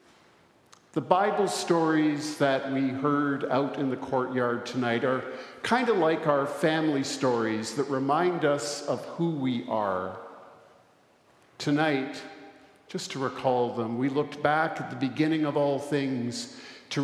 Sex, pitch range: male, 135-165 Hz